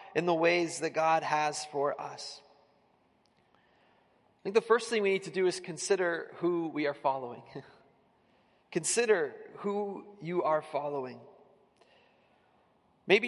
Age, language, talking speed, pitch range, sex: 30-49, English, 130 wpm, 155-190 Hz, male